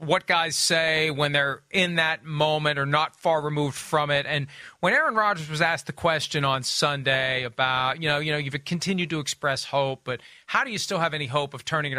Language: English